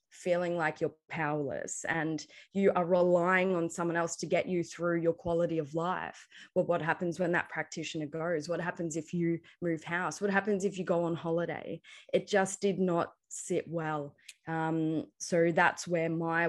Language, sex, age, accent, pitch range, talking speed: English, female, 20-39, Australian, 170-185 Hz, 180 wpm